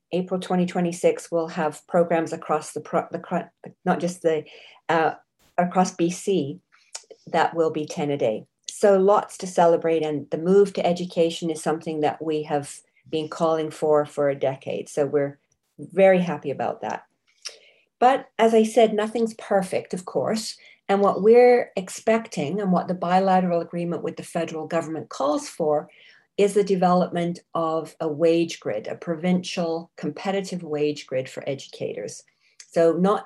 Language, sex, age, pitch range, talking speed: English, female, 50-69, 160-195 Hz, 155 wpm